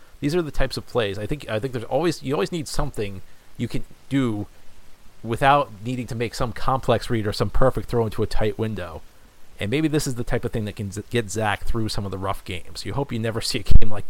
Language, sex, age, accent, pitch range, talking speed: English, male, 30-49, American, 95-115 Hz, 255 wpm